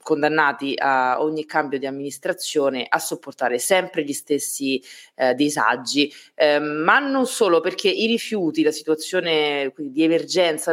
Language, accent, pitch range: Italian, native, 150-185 Hz